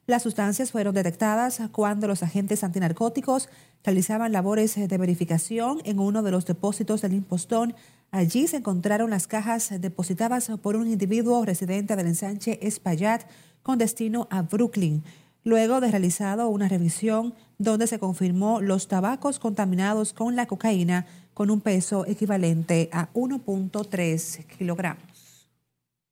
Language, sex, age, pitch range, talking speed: Spanish, female, 40-59, 185-225 Hz, 130 wpm